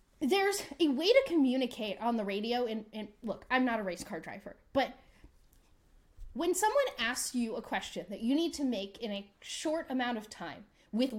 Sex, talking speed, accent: female, 195 wpm, American